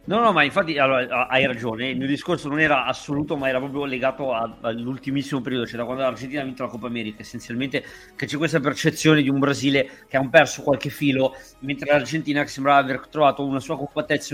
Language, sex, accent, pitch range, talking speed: Italian, male, native, 125-145 Hz, 210 wpm